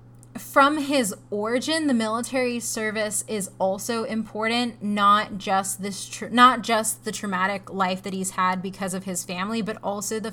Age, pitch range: 20-39, 195-225 Hz